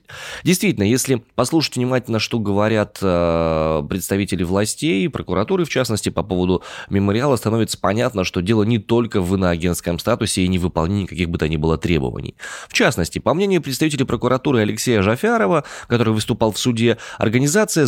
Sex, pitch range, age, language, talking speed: male, 95-130 Hz, 20-39, Russian, 160 wpm